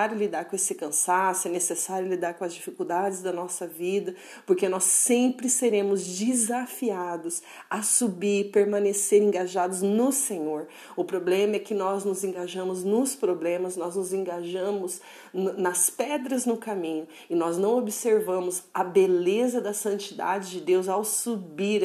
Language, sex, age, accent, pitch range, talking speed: Portuguese, female, 40-59, Brazilian, 185-220 Hz, 150 wpm